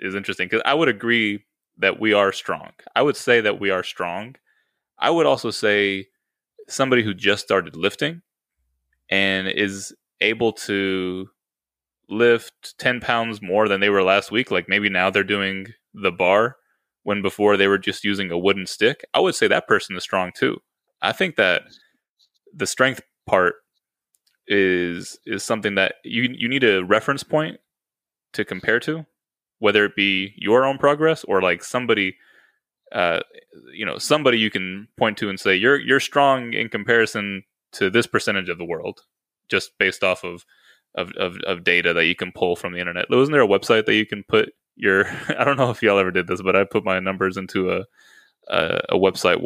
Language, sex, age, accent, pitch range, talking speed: English, male, 20-39, American, 95-115 Hz, 185 wpm